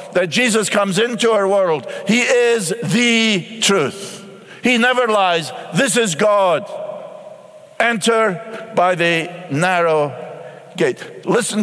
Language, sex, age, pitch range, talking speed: English, male, 60-79, 180-225 Hz, 115 wpm